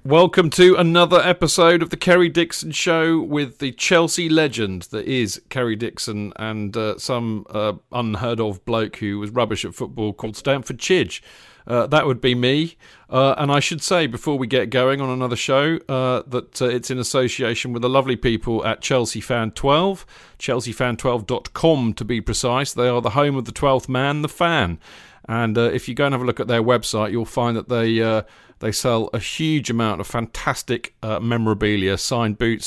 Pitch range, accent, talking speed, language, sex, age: 110-145 Hz, British, 195 wpm, English, male, 40-59